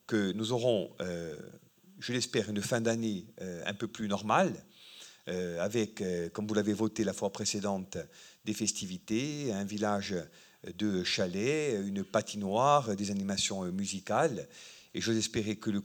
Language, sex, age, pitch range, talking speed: French, male, 50-69, 100-115 Hz, 135 wpm